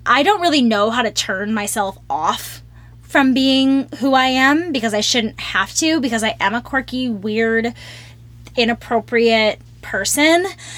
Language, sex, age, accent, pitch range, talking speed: English, female, 10-29, American, 200-245 Hz, 150 wpm